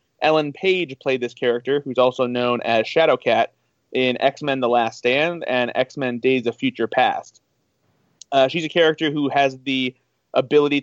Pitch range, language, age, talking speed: 125-145 Hz, English, 30-49, 160 wpm